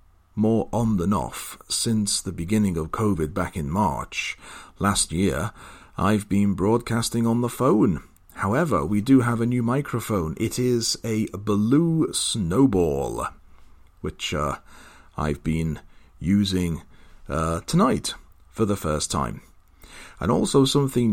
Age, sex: 40-59, male